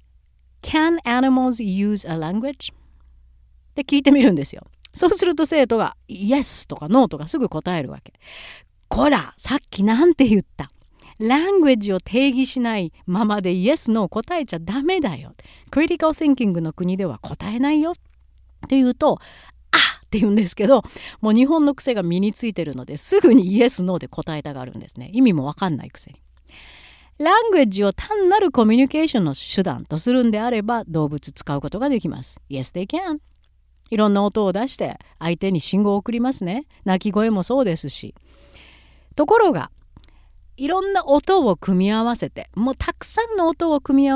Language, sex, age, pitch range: Japanese, female, 50-69, 165-275 Hz